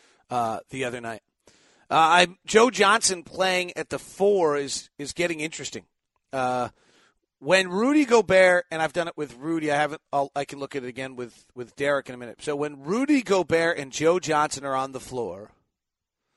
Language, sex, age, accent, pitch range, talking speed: English, male, 40-59, American, 130-175 Hz, 190 wpm